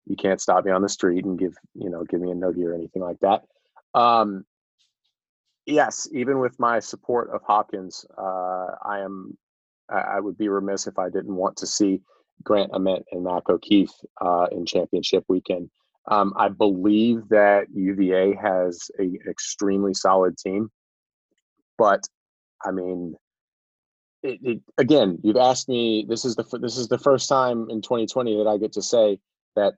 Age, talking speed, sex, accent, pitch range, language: 30-49, 170 wpm, male, American, 95-110 Hz, English